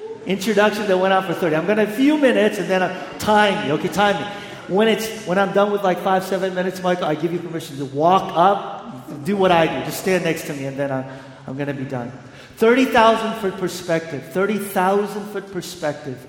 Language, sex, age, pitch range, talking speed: English, male, 40-59, 155-200 Hz, 215 wpm